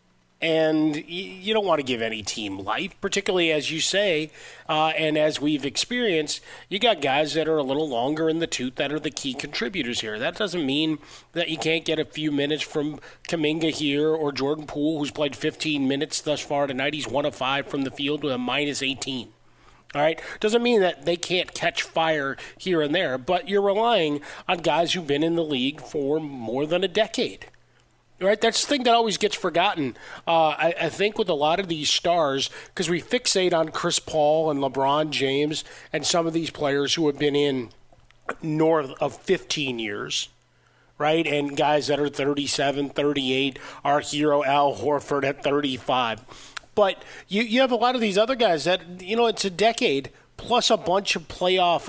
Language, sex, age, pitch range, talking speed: English, male, 30-49, 145-180 Hz, 195 wpm